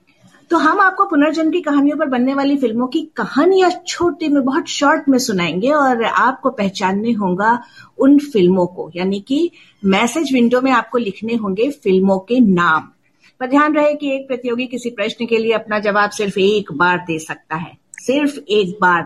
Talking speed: 180 wpm